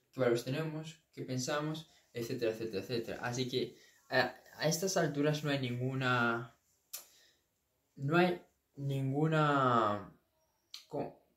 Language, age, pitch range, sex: Spanish, 20-39, 120-160 Hz, male